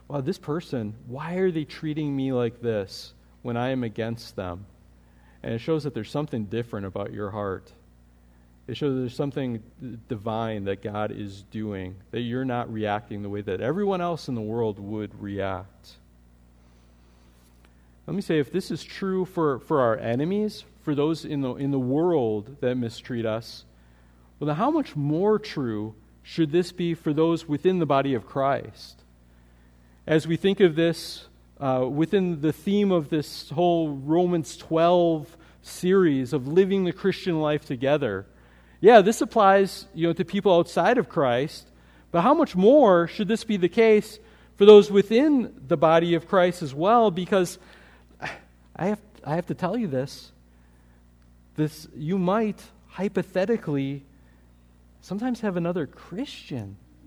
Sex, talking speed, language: male, 160 wpm, English